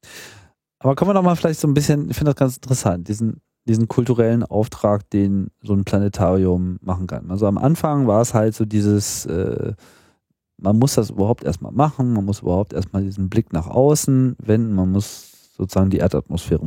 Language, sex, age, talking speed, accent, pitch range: German, male, 40-59, 185 wpm, German, 95-125 Hz